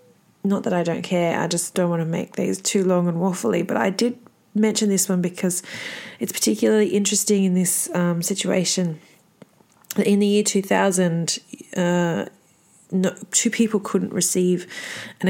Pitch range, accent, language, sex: 175-215 Hz, Australian, English, female